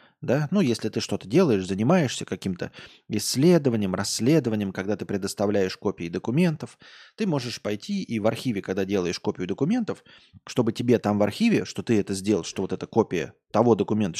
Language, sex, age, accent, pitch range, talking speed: Russian, male, 20-39, native, 105-150 Hz, 170 wpm